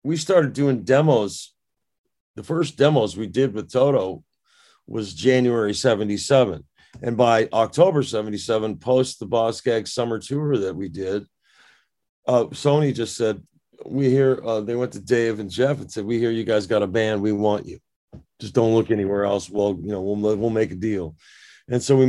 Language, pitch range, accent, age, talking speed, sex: English, 105-130 Hz, American, 40-59, 185 wpm, male